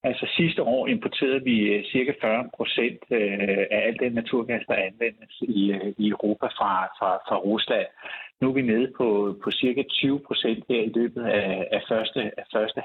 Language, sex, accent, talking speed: Danish, male, native, 190 wpm